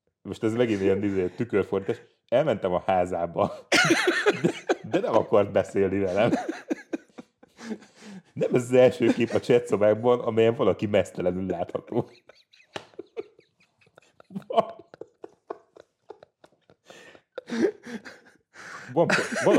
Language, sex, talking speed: Hungarian, male, 80 wpm